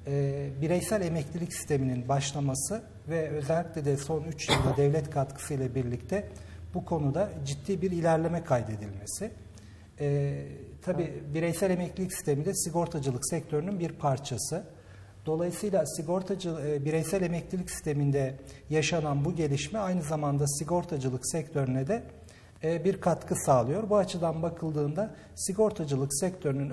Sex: male